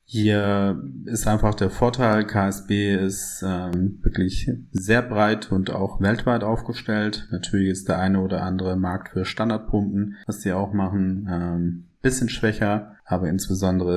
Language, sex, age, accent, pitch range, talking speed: German, male, 30-49, German, 90-105 Hz, 145 wpm